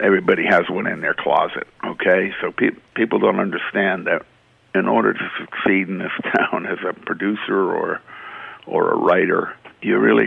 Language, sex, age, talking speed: English, male, 50-69, 170 wpm